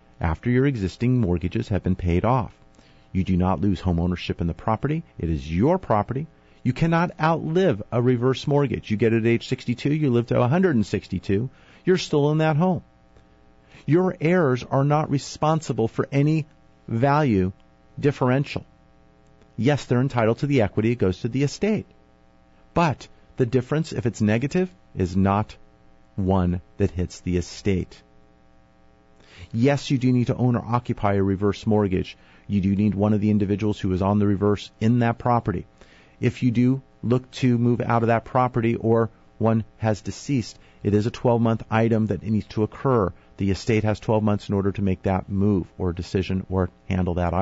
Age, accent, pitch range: 40-59, American, 90-125 Hz